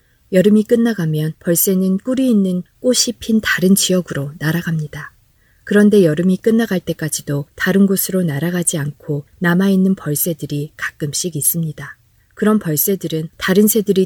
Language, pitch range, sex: Korean, 150-205 Hz, female